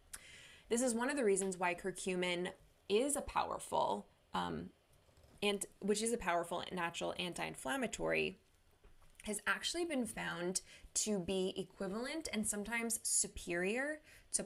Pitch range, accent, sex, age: 175-210 Hz, American, female, 20-39